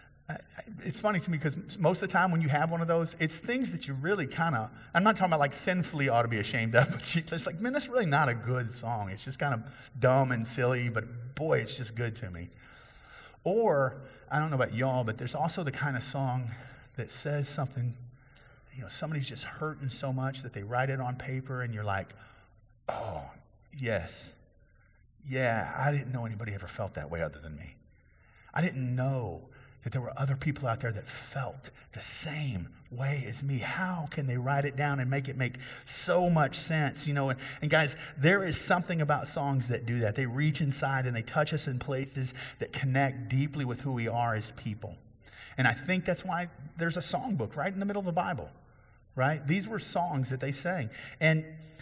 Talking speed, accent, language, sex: 215 wpm, American, English, male